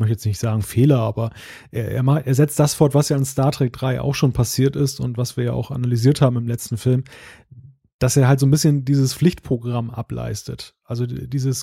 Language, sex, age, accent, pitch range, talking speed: German, male, 30-49, German, 130-150 Hz, 225 wpm